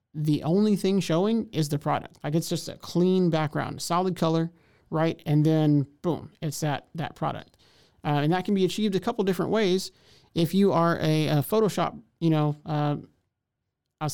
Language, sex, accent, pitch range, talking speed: English, male, American, 150-180 Hz, 185 wpm